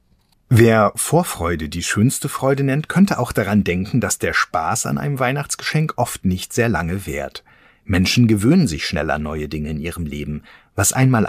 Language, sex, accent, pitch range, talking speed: German, male, German, 90-135 Hz, 170 wpm